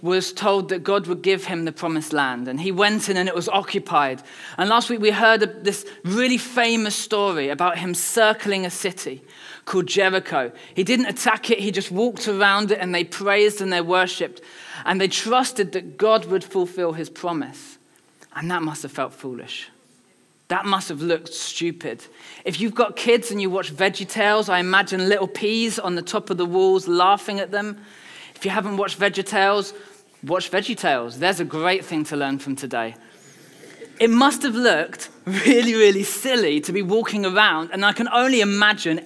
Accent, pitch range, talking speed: British, 175-215 Hz, 185 wpm